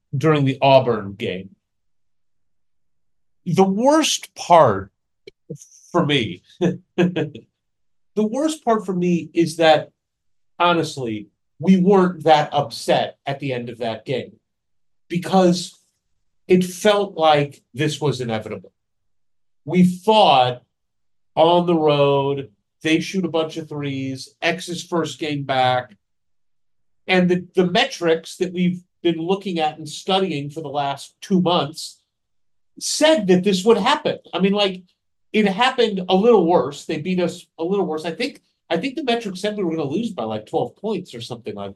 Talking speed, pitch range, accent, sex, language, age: 150 wpm, 130-180 Hz, American, male, English, 40-59